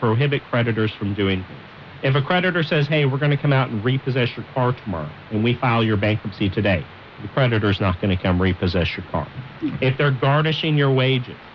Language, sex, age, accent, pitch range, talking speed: English, male, 40-59, American, 105-135 Hz, 210 wpm